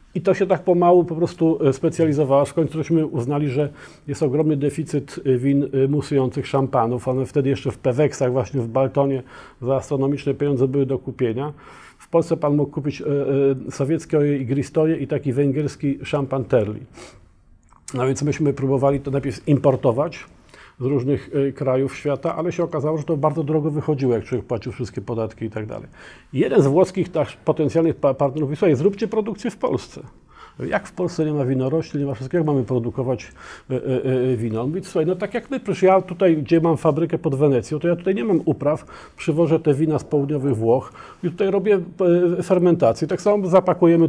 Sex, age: male, 40-59